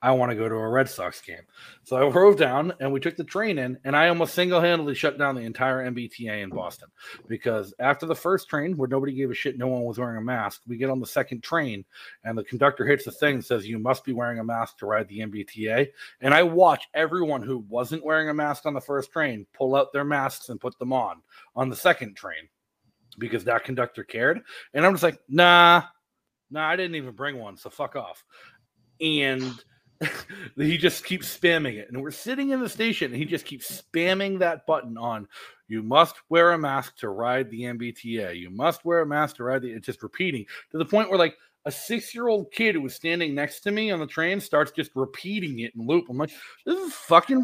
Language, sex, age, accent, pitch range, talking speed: English, male, 30-49, American, 125-175 Hz, 235 wpm